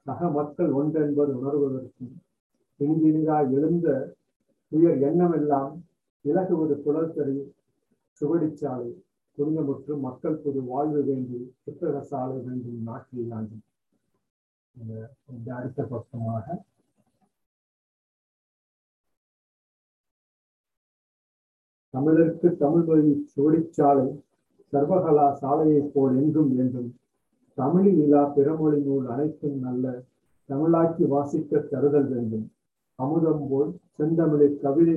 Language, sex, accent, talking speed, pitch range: Tamil, male, native, 80 wpm, 130-155 Hz